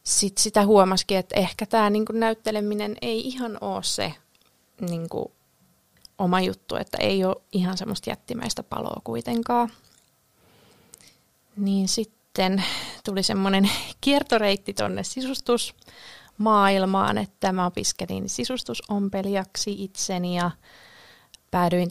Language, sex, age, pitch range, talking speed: Finnish, female, 30-49, 185-225 Hz, 100 wpm